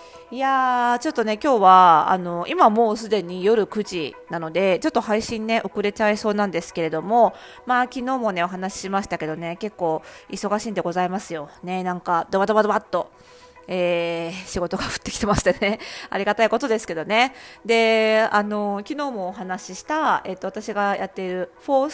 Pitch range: 185-235 Hz